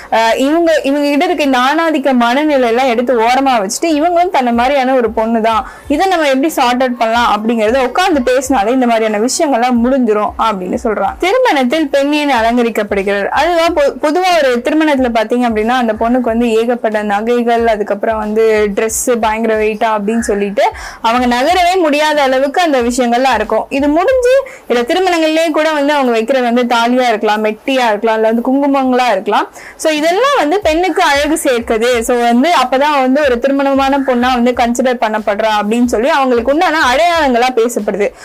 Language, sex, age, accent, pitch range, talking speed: Tamil, female, 10-29, native, 230-295 Hz, 105 wpm